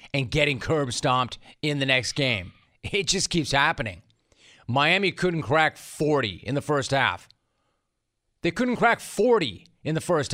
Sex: male